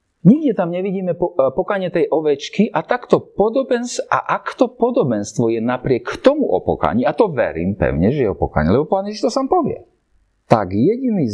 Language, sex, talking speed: Slovak, male, 170 wpm